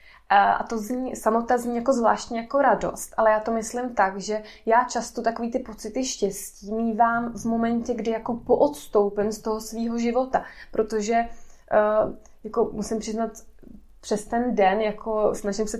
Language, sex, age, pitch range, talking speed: Czech, female, 20-39, 220-240 Hz, 155 wpm